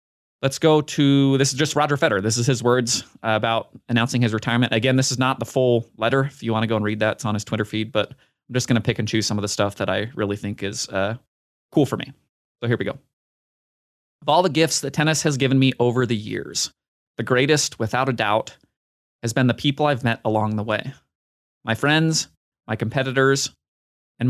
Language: English